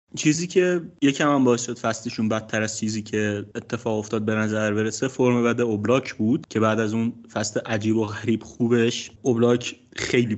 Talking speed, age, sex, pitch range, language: 180 wpm, 30-49, male, 105-120 Hz, Persian